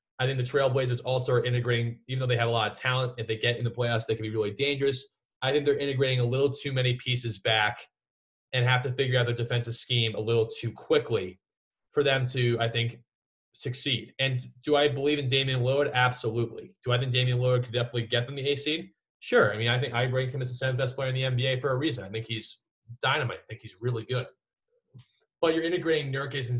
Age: 20-39